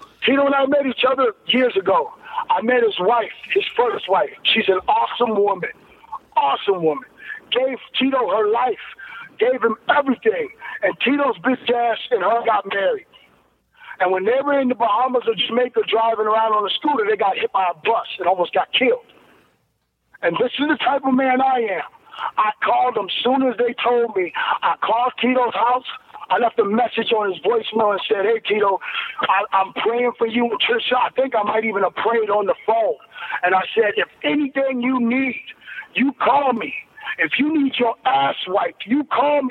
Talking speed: 195 wpm